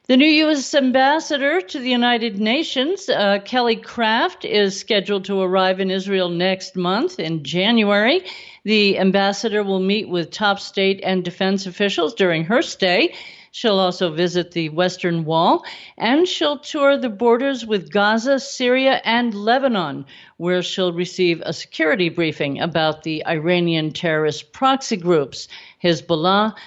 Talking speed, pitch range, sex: 140 wpm, 170-245 Hz, female